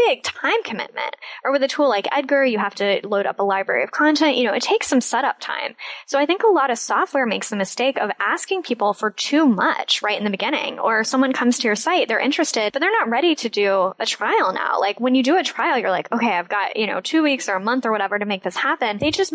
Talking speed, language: 275 wpm, English